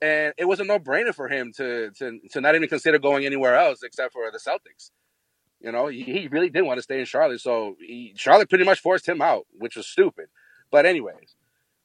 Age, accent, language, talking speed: 30-49, American, English, 225 wpm